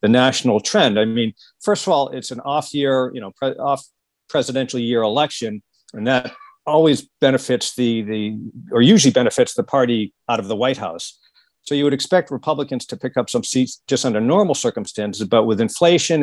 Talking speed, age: 190 wpm, 50-69